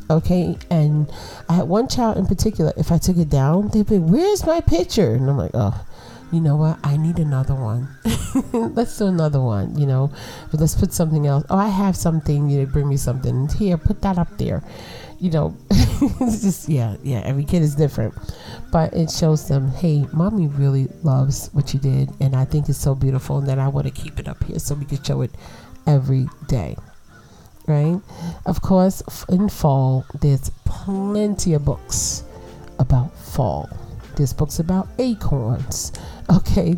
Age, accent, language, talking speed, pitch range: 40-59, American, English, 185 wpm, 135-170 Hz